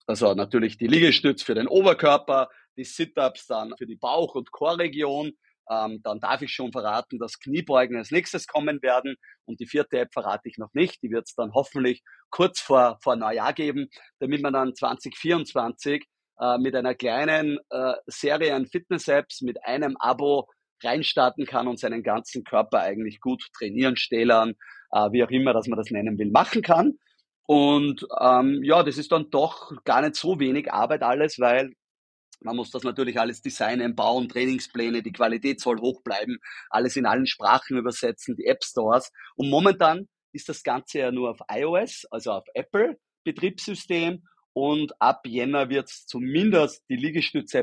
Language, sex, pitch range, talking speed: German, male, 120-150 Hz, 170 wpm